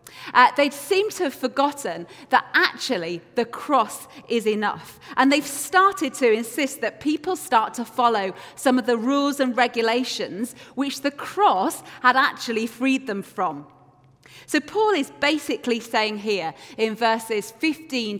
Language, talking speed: English, 150 wpm